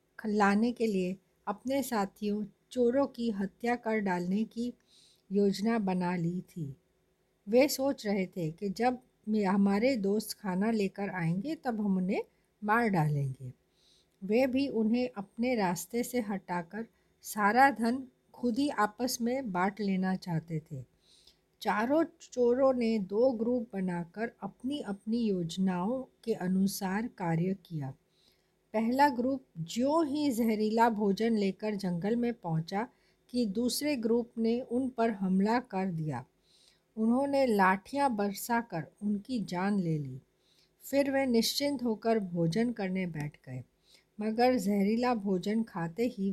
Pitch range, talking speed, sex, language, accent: 185-240 Hz, 130 wpm, female, Hindi, native